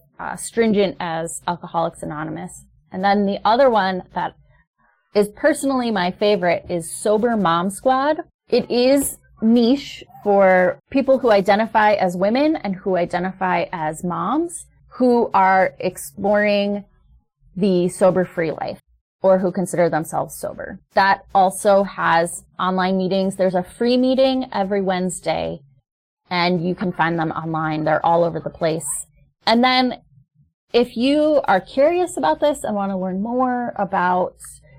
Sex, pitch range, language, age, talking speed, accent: female, 170-220 Hz, English, 20-39, 140 wpm, American